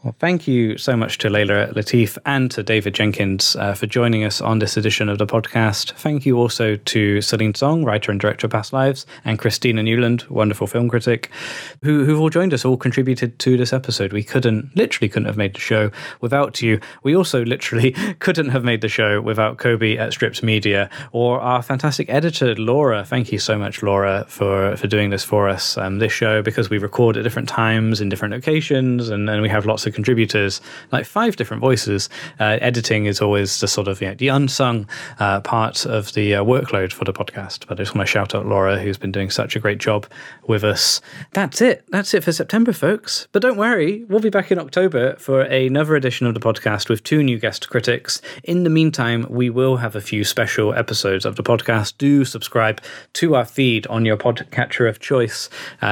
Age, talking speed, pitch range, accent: 20-39, 210 wpm, 105-130 Hz, British